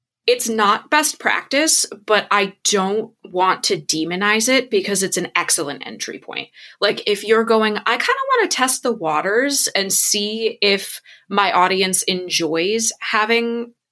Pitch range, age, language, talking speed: 180-230 Hz, 20-39, English, 155 wpm